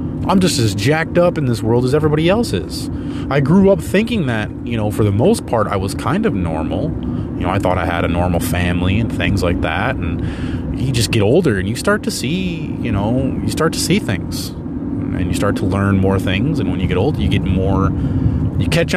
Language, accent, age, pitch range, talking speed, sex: English, American, 30-49, 90-125 Hz, 235 wpm, male